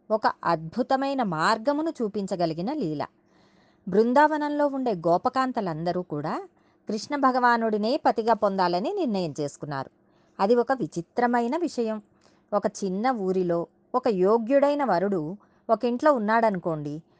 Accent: native